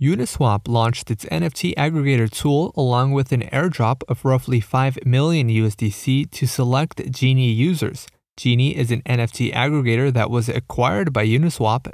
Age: 30-49